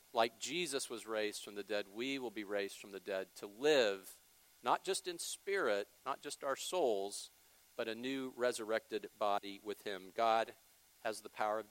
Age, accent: 50-69, American